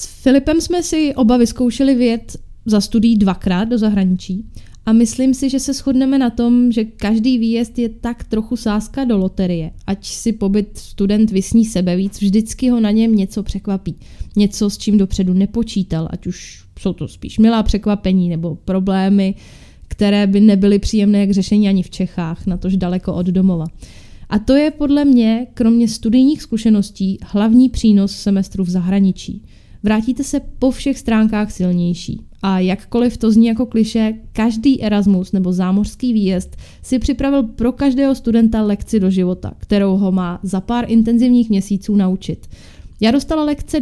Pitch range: 190-235 Hz